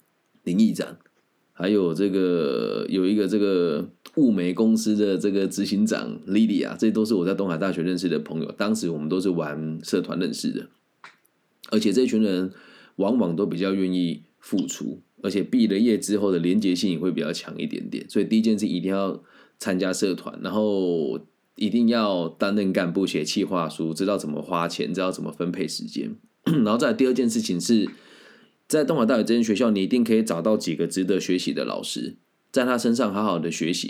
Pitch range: 95-120 Hz